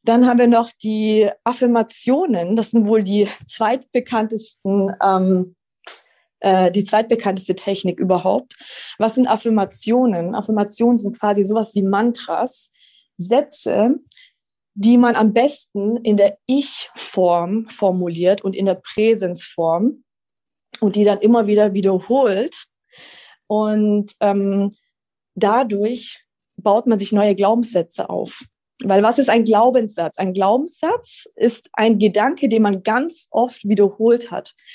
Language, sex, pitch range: German, female, 200-245 Hz